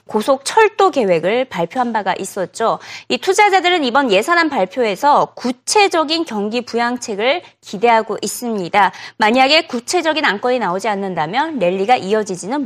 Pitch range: 215-330 Hz